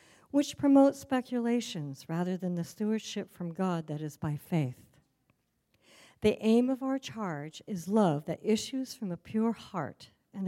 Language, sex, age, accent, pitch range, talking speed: English, female, 60-79, American, 170-220 Hz, 155 wpm